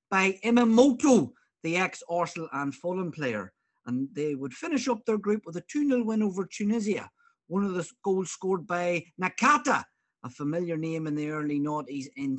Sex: male